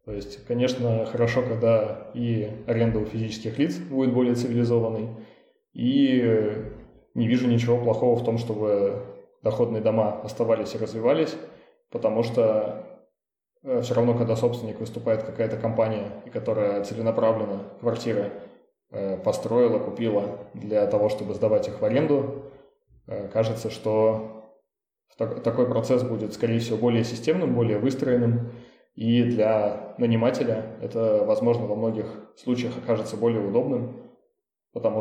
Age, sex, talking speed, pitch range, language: 20-39, male, 120 wpm, 110-120 Hz, Russian